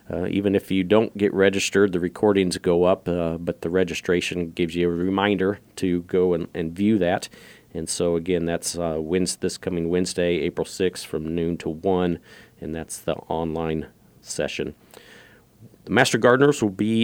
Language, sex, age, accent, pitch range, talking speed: English, male, 40-59, American, 85-100 Hz, 175 wpm